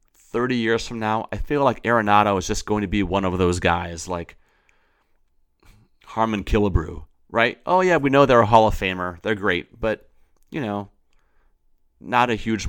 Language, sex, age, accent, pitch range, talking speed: English, male, 30-49, American, 90-110 Hz, 180 wpm